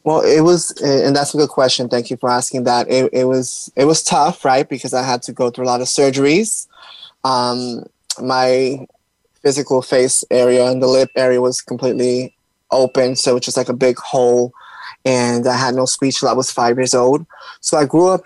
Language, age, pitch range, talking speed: English, 20-39, 125-140 Hz, 215 wpm